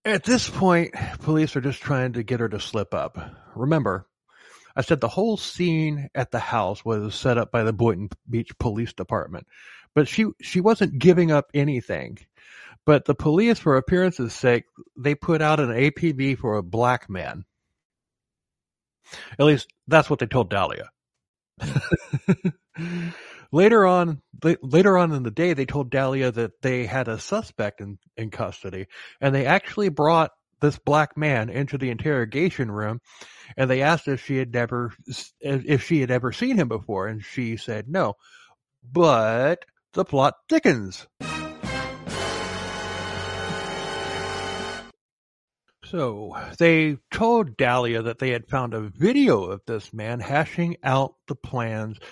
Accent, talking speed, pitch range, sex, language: American, 145 wpm, 115-160 Hz, male, English